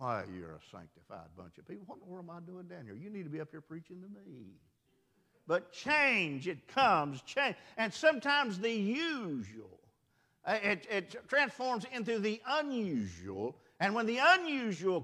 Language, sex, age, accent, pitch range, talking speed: English, male, 50-69, American, 145-230 Hz, 170 wpm